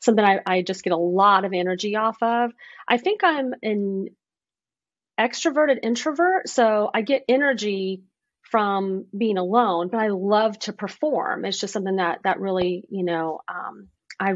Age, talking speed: 30-49, 165 wpm